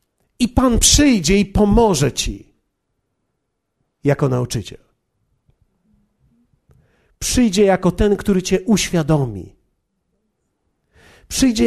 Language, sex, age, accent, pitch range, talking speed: Polish, male, 50-69, native, 155-235 Hz, 75 wpm